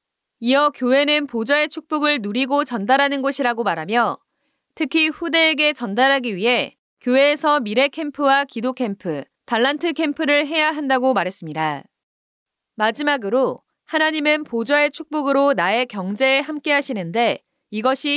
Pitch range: 235-295 Hz